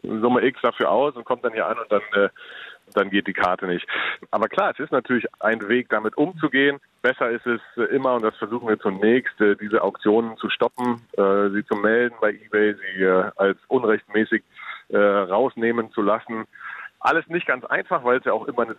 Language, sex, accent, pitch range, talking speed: German, male, German, 100-120 Hz, 190 wpm